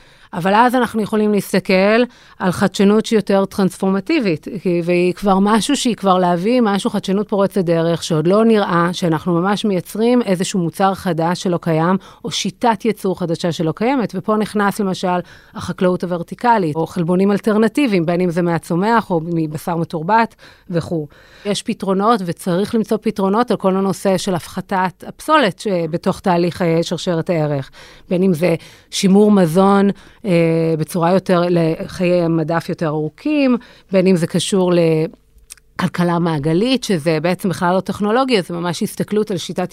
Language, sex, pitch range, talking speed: Hebrew, female, 175-205 Hz, 135 wpm